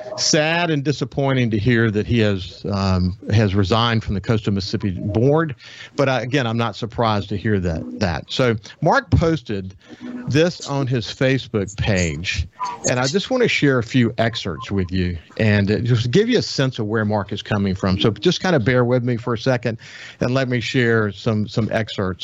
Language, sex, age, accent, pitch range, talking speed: English, male, 50-69, American, 105-125 Hz, 200 wpm